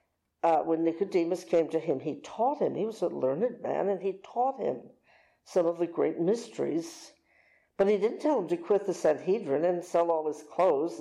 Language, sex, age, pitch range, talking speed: English, female, 60-79, 170-240 Hz, 200 wpm